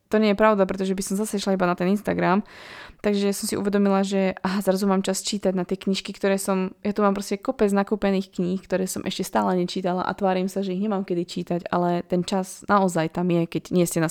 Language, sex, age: Slovak, female, 20-39